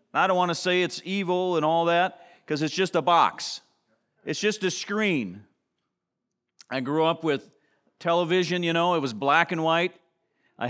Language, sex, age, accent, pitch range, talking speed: English, male, 40-59, American, 155-190 Hz, 180 wpm